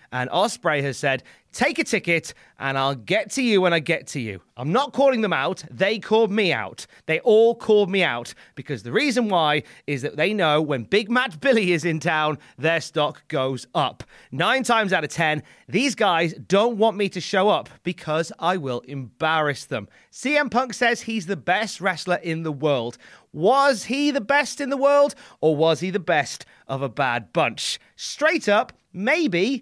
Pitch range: 145-225 Hz